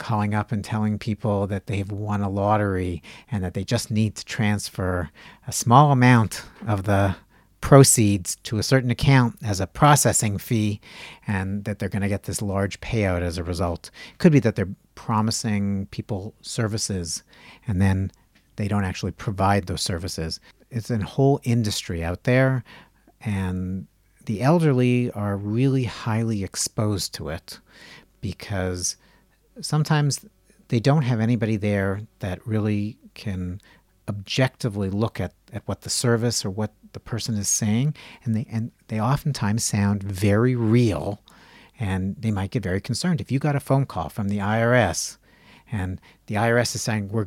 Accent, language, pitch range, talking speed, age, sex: American, English, 100-120 Hz, 160 wpm, 50-69, male